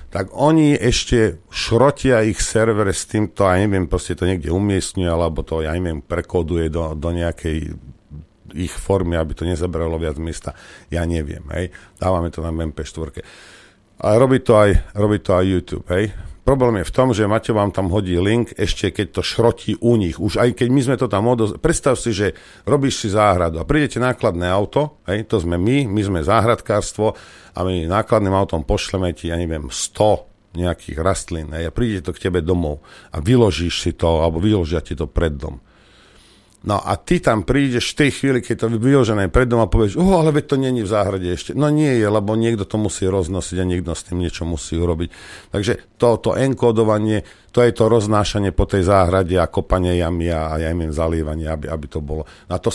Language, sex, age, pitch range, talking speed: Slovak, male, 50-69, 85-110 Hz, 200 wpm